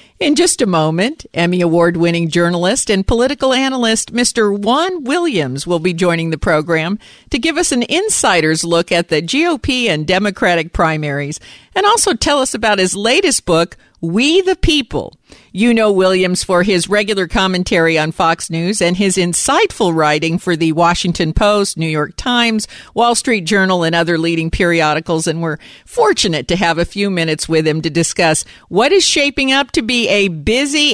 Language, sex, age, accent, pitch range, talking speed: English, female, 50-69, American, 165-235 Hz, 175 wpm